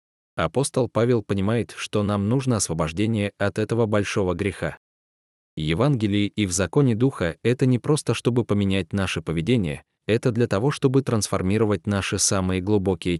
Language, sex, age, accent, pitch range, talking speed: Russian, male, 20-39, native, 95-125 Hz, 140 wpm